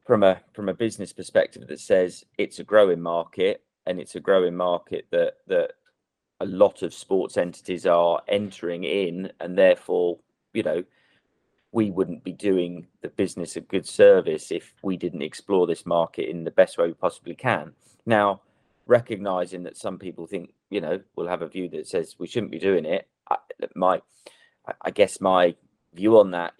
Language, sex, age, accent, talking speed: English, male, 30-49, British, 180 wpm